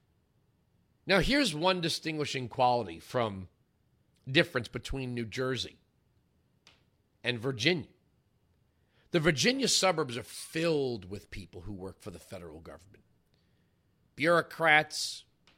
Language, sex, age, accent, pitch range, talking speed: English, male, 40-59, American, 125-180 Hz, 100 wpm